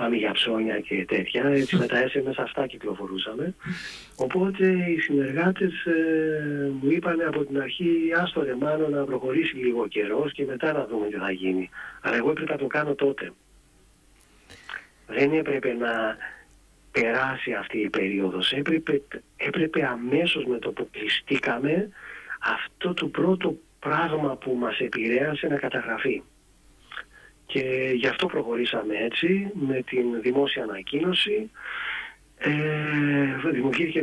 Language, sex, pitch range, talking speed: Greek, male, 120-155 Hz, 130 wpm